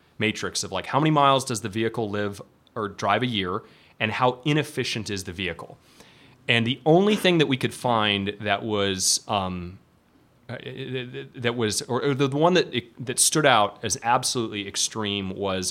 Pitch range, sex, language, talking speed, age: 100-125 Hz, male, English, 170 wpm, 30-49